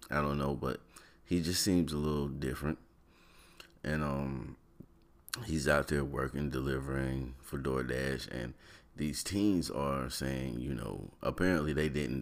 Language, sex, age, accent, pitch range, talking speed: English, male, 30-49, American, 65-80 Hz, 140 wpm